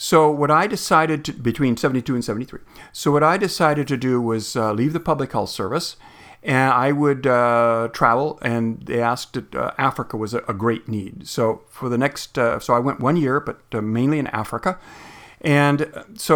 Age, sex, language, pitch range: 50-69, male, English, 120-145 Hz